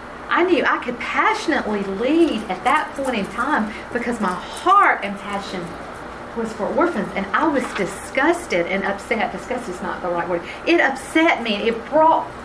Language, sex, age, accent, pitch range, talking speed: English, female, 40-59, American, 200-280 Hz, 175 wpm